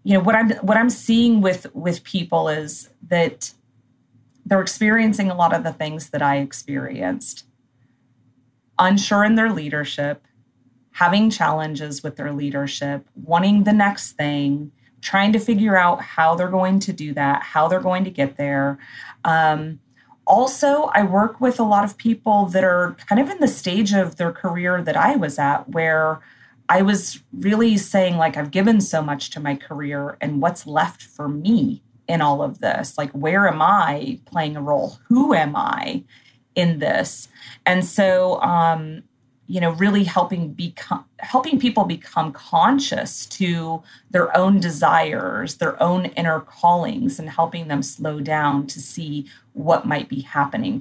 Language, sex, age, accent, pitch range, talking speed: English, female, 30-49, American, 145-195 Hz, 165 wpm